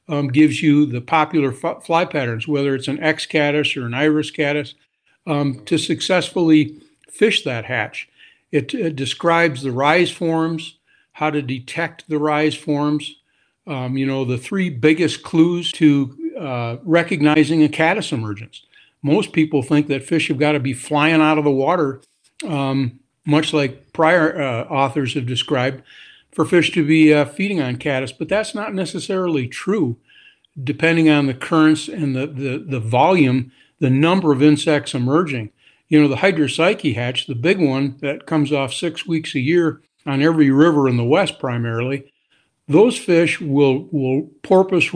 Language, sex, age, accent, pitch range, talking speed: English, male, 60-79, American, 135-160 Hz, 165 wpm